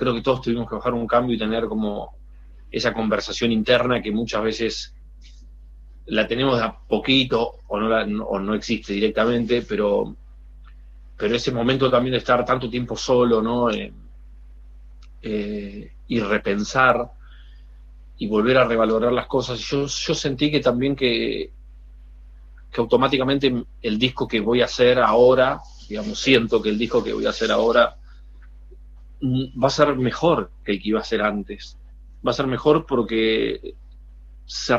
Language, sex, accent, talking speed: Spanish, male, Argentinian, 160 wpm